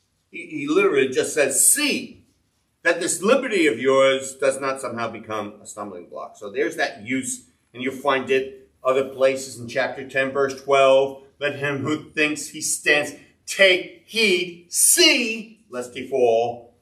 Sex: male